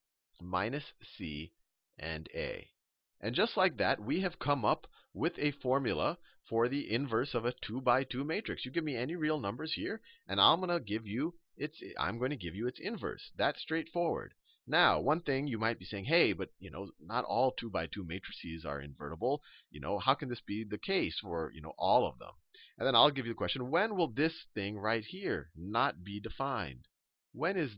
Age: 40-59